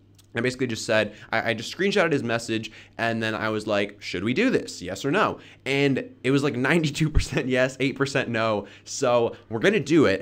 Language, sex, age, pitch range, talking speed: English, male, 20-39, 105-135 Hz, 205 wpm